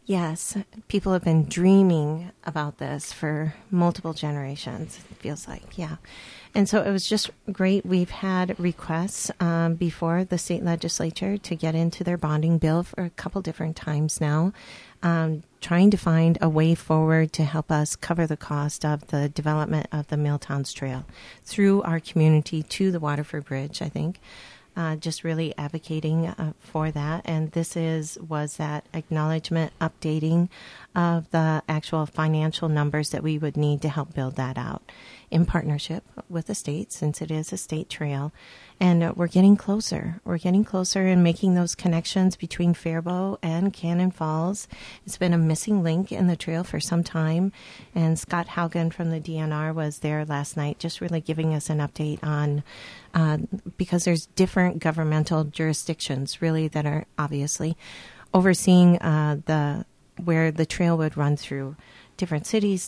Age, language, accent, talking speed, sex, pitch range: 40-59, English, American, 165 wpm, female, 155-175 Hz